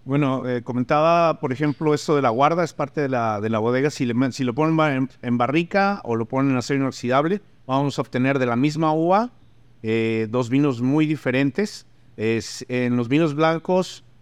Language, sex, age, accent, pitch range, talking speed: Spanish, male, 50-69, Mexican, 120-150 Hz, 200 wpm